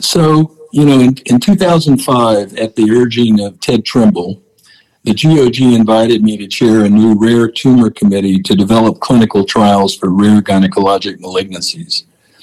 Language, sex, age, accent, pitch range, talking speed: English, male, 60-79, American, 100-120 Hz, 150 wpm